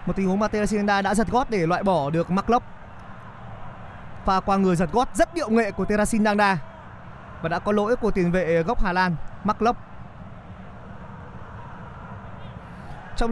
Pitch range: 170-210 Hz